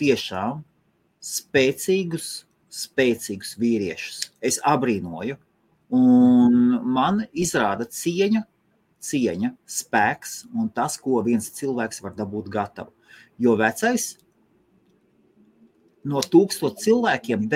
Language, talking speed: English, 85 wpm